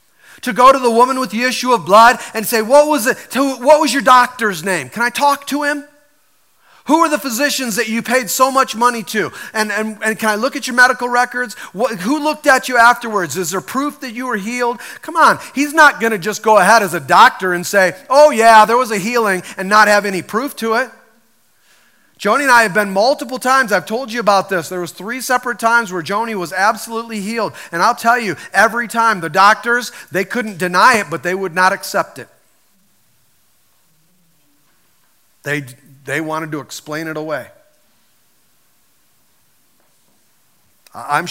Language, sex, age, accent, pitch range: Japanese, male, 40-59, American, 185-250 Hz